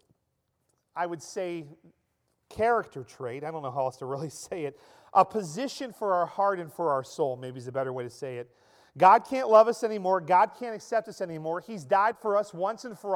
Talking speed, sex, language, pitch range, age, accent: 220 wpm, male, English, 175-225 Hz, 40-59, American